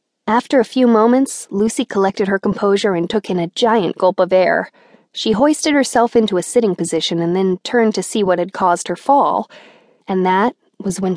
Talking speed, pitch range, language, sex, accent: 200 wpm, 180-225 Hz, English, female, American